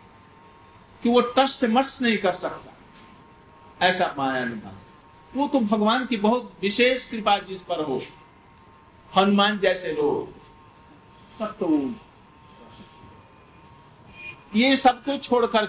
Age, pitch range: 50-69, 185-240 Hz